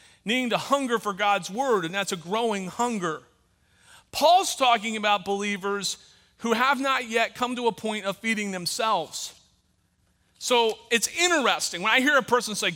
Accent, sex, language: American, male, English